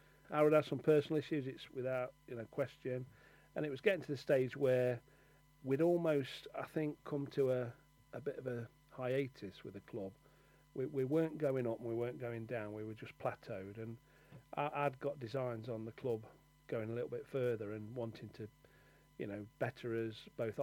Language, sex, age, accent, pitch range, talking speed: English, male, 40-59, British, 115-145 Hz, 200 wpm